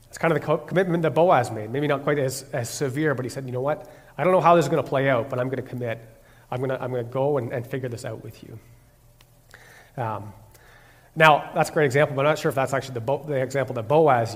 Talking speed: 285 wpm